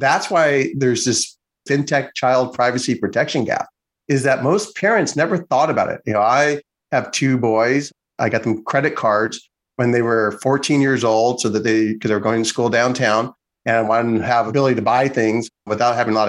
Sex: male